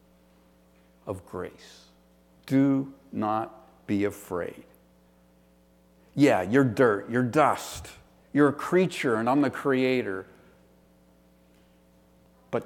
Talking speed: 90 wpm